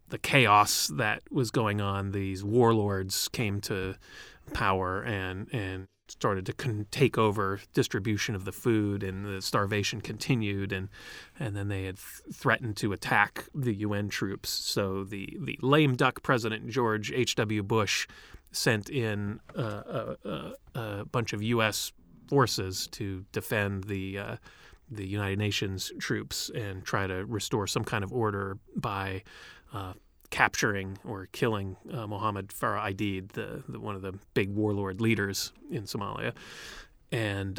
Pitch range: 95-115 Hz